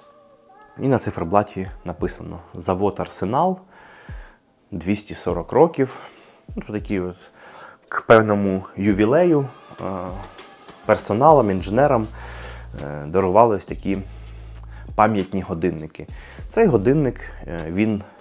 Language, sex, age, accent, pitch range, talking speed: Ukrainian, male, 20-39, native, 85-110 Hz, 85 wpm